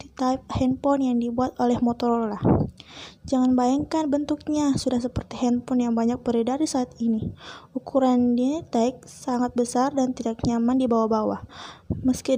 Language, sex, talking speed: Indonesian, female, 140 wpm